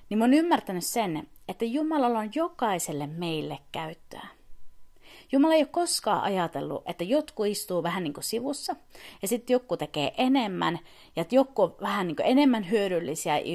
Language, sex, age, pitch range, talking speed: Finnish, female, 30-49, 170-270 Hz, 155 wpm